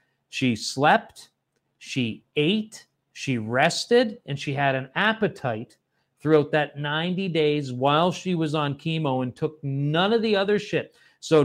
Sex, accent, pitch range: male, American, 130-155 Hz